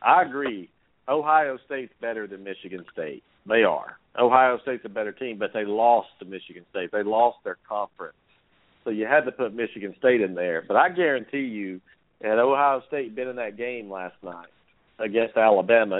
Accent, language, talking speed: American, English, 185 wpm